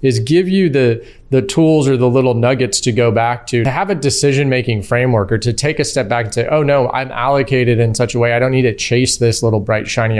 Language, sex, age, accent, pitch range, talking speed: English, male, 30-49, American, 115-130 Hz, 265 wpm